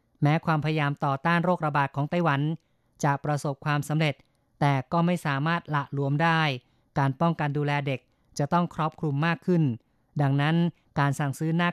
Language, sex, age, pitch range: Thai, female, 20-39, 140-160 Hz